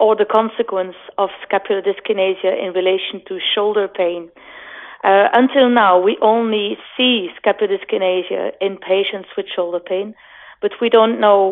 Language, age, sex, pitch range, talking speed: English, 30-49, female, 190-230 Hz, 145 wpm